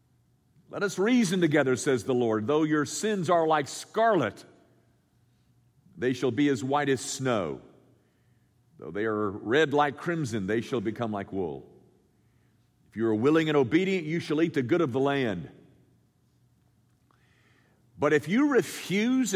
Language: English